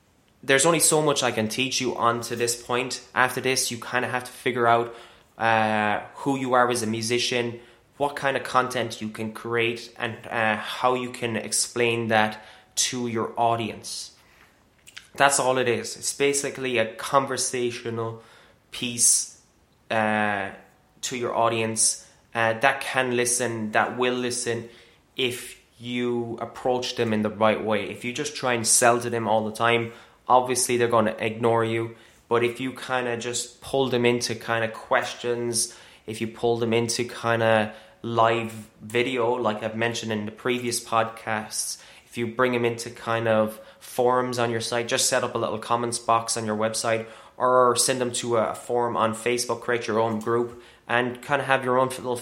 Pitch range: 115-125 Hz